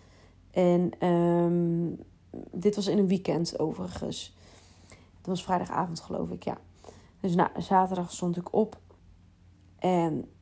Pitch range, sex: 150-195 Hz, female